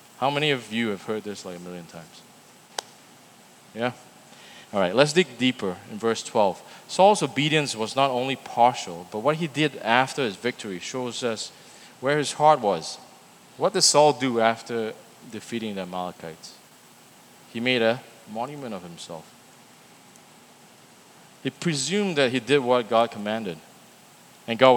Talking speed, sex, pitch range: 155 wpm, male, 115-150 Hz